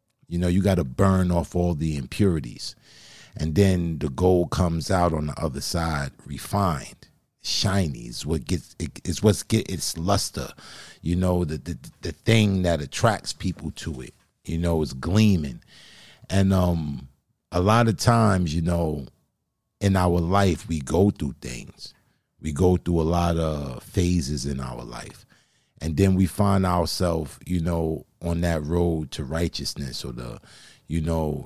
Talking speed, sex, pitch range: 165 wpm, male, 75-90 Hz